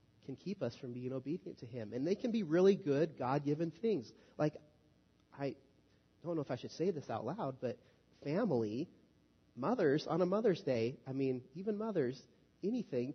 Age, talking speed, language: 30-49, 180 wpm, English